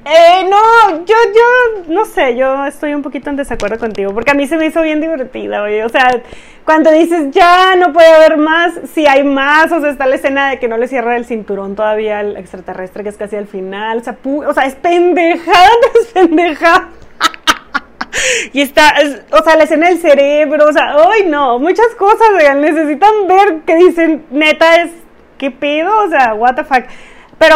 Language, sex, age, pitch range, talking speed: Spanish, female, 30-49, 235-330 Hz, 200 wpm